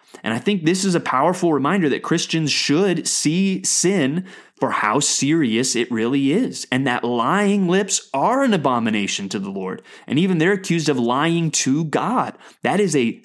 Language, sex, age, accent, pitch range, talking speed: English, male, 20-39, American, 135-190 Hz, 180 wpm